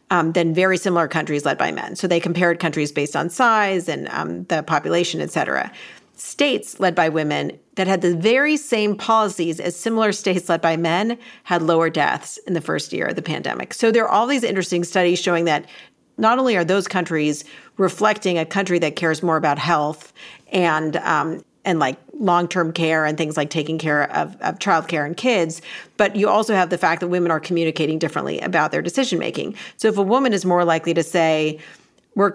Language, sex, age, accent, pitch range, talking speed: English, female, 40-59, American, 165-200 Hz, 200 wpm